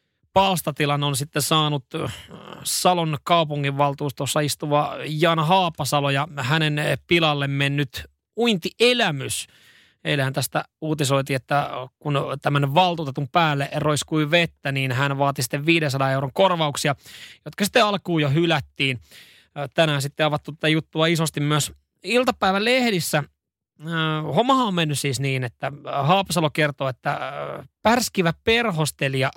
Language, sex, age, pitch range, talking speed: Finnish, male, 20-39, 140-175 Hz, 115 wpm